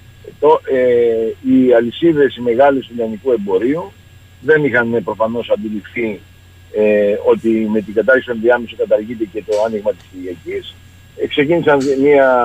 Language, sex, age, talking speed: Greek, male, 60-79, 130 wpm